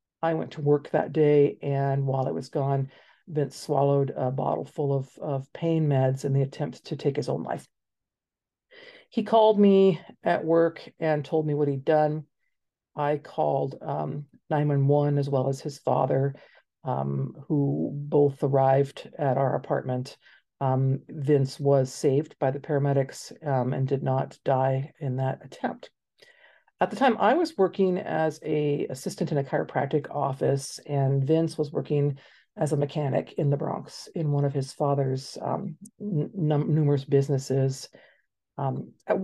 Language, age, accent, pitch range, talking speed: English, 50-69, American, 135-155 Hz, 155 wpm